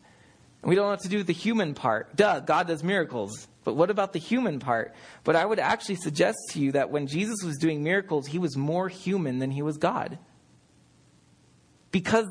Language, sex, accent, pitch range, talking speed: English, male, American, 135-180 Hz, 195 wpm